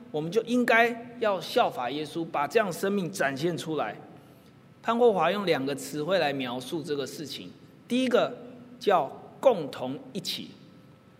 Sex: male